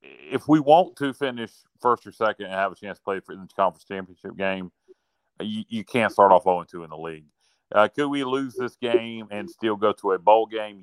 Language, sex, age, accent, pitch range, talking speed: English, male, 40-59, American, 95-115 Hz, 225 wpm